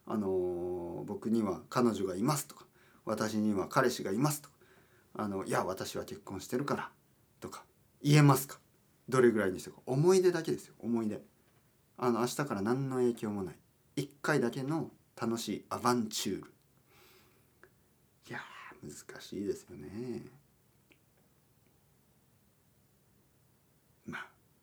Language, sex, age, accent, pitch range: Japanese, male, 40-59, native, 85-125 Hz